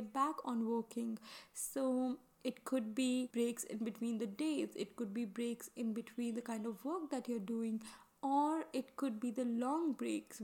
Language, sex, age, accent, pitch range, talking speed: English, female, 10-29, Indian, 235-275 Hz, 185 wpm